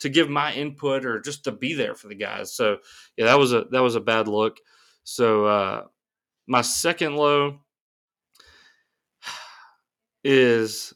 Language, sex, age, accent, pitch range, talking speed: English, male, 20-39, American, 120-150 Hz, 155 wpm